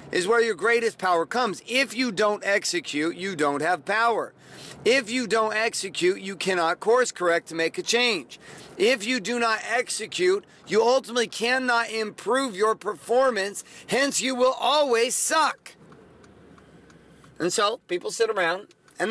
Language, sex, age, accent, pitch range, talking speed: English, male, 40-59, American, 180-235 Hz, 150 wpm